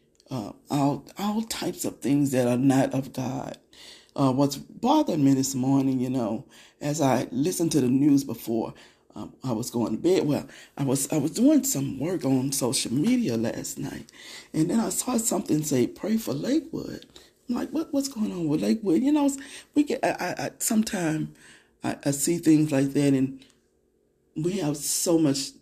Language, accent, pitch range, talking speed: English, American, 130-180 Hz, 185 wpm